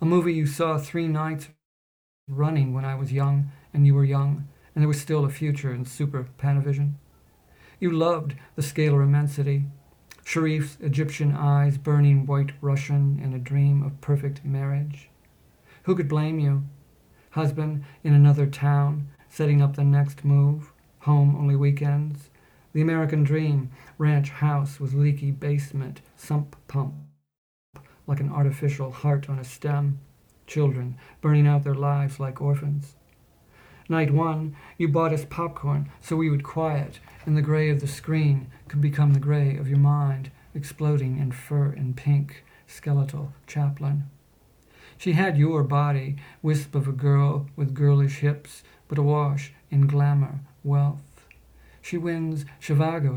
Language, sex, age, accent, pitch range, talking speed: English, male, 50-69, American, 140-150 Hz, 145 wpm